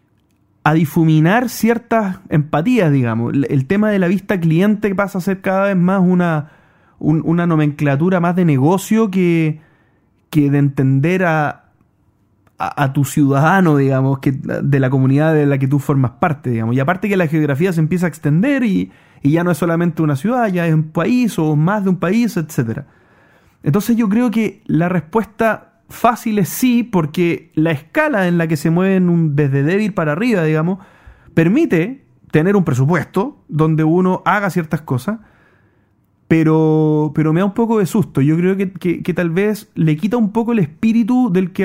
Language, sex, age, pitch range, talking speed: Spanish, male, 30-49, 140-185 Hz, 180 wpm